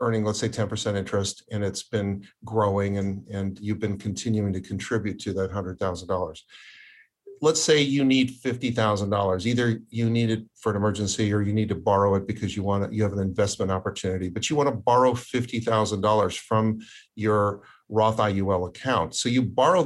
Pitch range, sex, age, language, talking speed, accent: 100-120 Hz, male, 50-69, English, 170 wpm, American